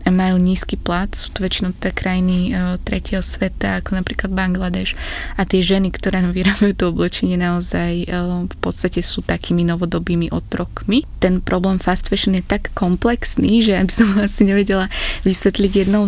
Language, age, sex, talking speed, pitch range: Slovak, 20-39, female, 155 wpm, 175-190 Hz